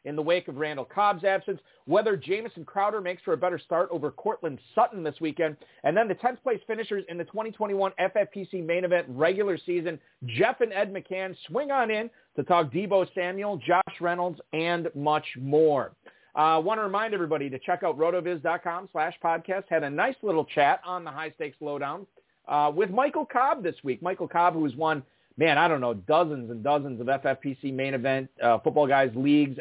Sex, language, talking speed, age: male, English, 200 wpm, 40-59